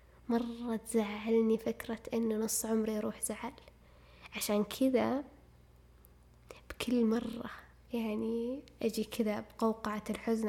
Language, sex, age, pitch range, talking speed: Arabic, female, 10-29, 200-235 Hz, 95 wpm